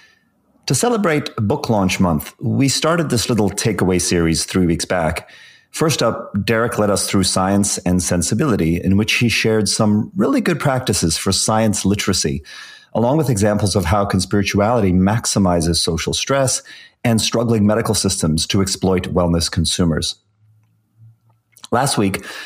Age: 40-59